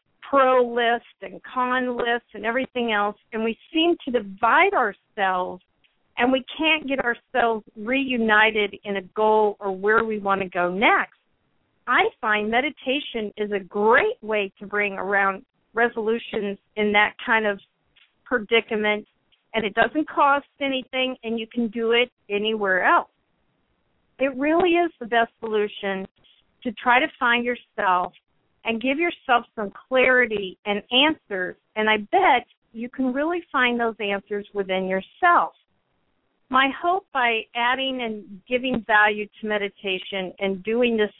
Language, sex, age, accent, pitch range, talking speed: English, female, 50-69, American, 205-260 Hz, 145 wpm